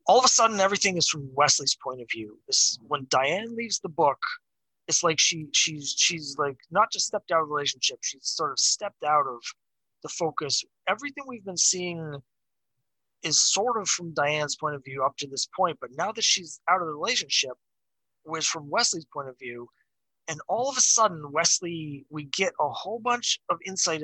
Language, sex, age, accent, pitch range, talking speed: English, male, 30-49, American, 145-175 Hz, 200 wpm